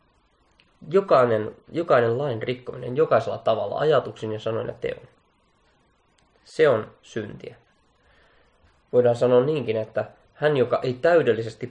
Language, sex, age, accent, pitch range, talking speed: Finnish, male, 20-39, native, 110-145 Hz, 115 wpm